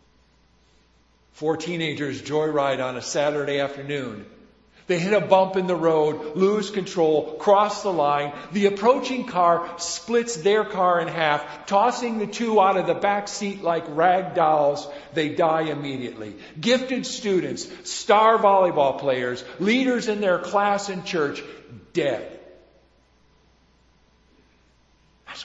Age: 50-69